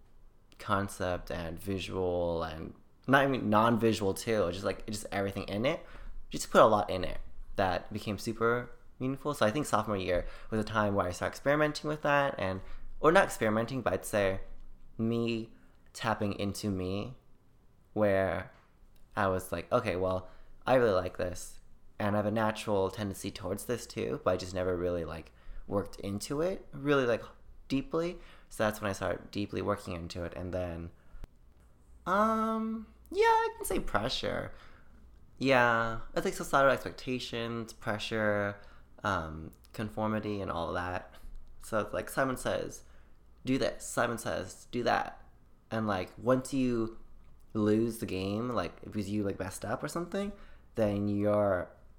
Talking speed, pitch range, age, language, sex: 160 wpm, 95-115 Hz, 20-39, English, male